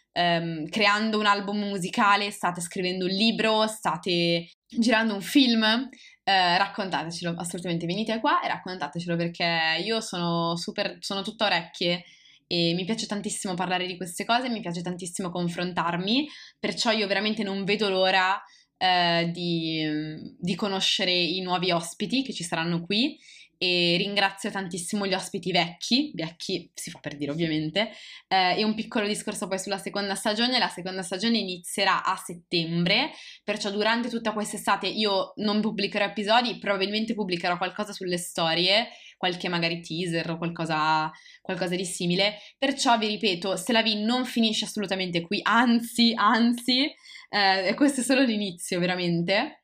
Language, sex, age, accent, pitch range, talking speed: Italian, female, 20-39, native, 175-210 Hz, 145 wpm